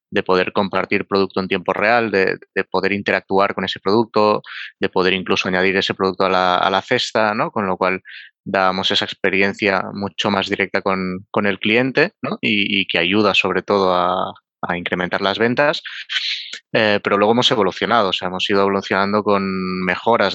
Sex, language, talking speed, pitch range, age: male, Spanish, 185 wpm, 90-100 Hz, 20-39